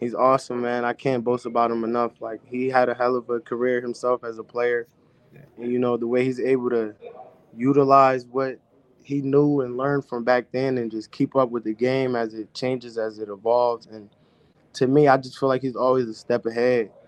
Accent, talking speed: American, 220 wpm